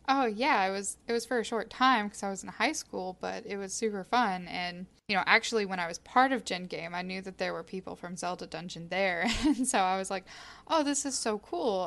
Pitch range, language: 185-215 Hz, English